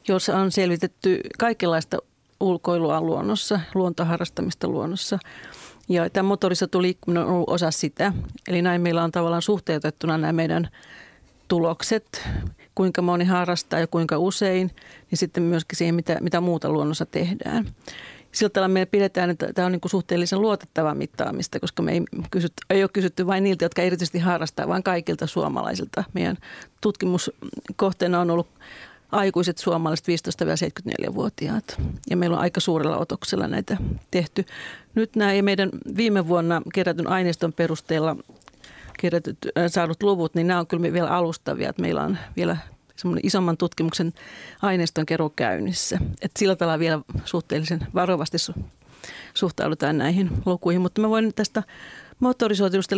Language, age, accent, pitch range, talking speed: Finnish, 40-59, native, 170-190 Hz, 135 wpm